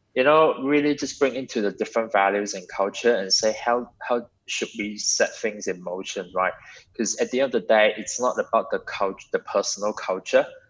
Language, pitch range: English, 95-125 Hz